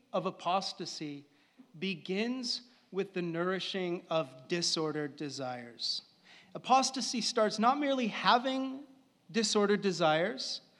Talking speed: 90 wpm